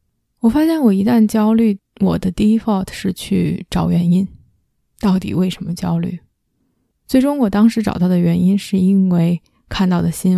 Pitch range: 180-210 Hz